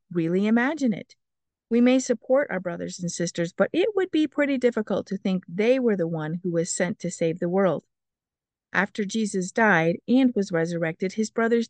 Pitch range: 180-245 Hz